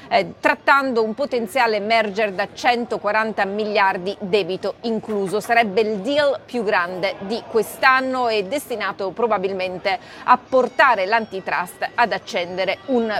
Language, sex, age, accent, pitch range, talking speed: Italian, female, 30-49, native, 210-255 Hz, 120 wpm